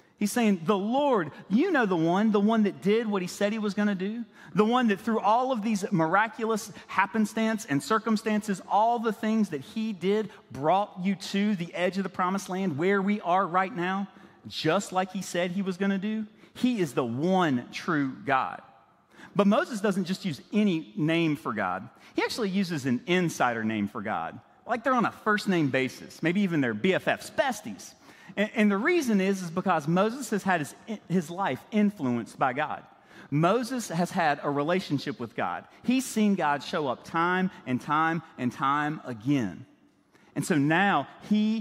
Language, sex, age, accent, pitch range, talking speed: English, male, 40-59, American, 160-210 Hz, 190 wpm